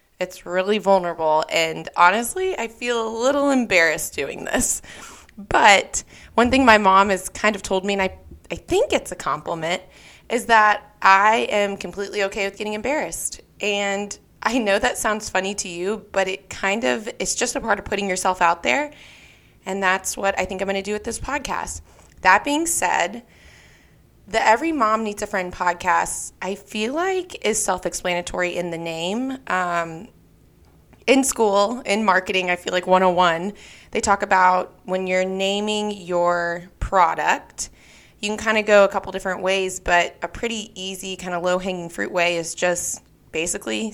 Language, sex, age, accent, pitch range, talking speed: English, female, 20-39, American, 180-210 Hz, 175 wpm